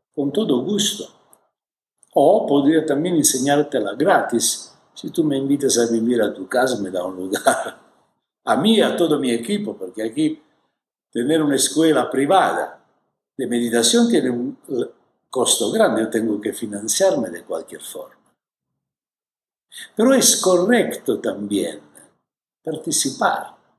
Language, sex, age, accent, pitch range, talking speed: Spanish, male, 60-79, Italian, 130-220 Hz, 130 wpm